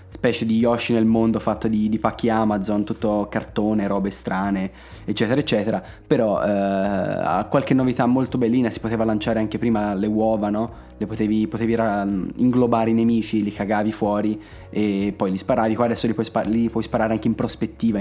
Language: Italian